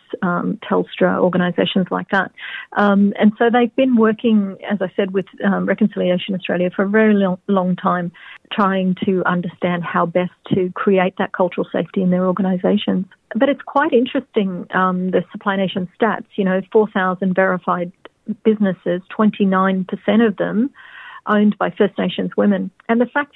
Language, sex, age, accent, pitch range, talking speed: English, female, 40-59, Australian, 190-225 Hz, 160 wpm